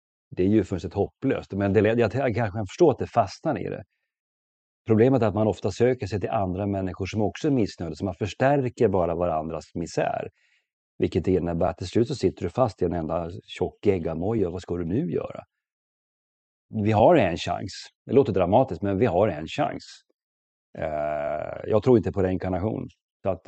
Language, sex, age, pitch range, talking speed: English, male, 40-59, 85-110 Hz, 190 wpm